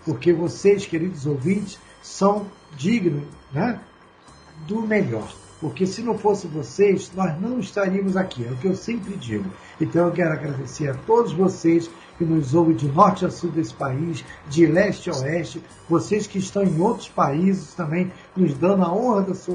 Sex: male